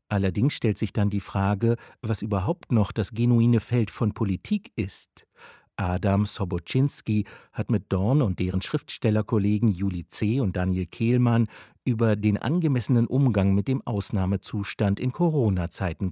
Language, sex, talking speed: German, male, 140 wpm